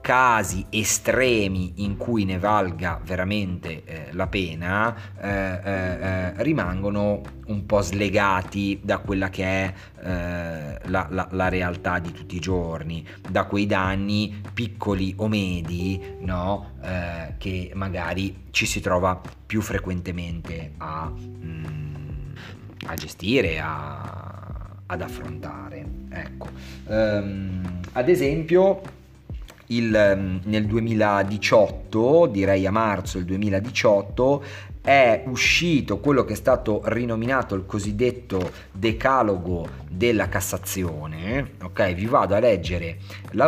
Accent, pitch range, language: native, 90-115 Hz, Italian